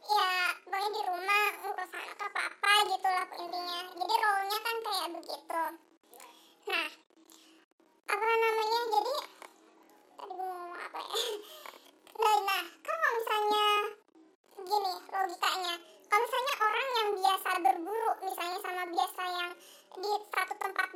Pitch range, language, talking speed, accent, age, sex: 360-425 Hz, Indonesian, 130 wpm, native, 10-29, male